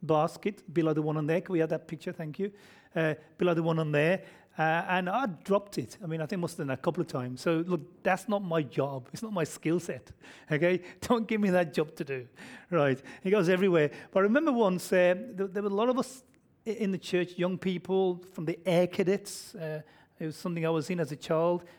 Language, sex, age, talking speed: English, male, 30-49, 250 wpm